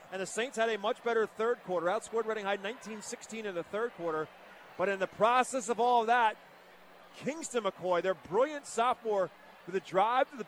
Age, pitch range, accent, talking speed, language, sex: 40-59, 200-245 Hz, American, 195 wpm, English, male